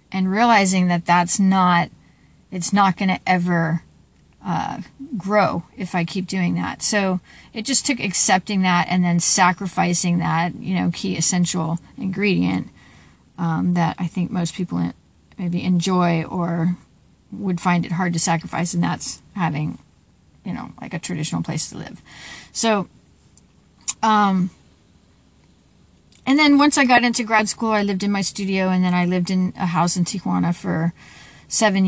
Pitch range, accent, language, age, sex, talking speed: 175-200 Hz, American, English, 40-59, female, 160 wpm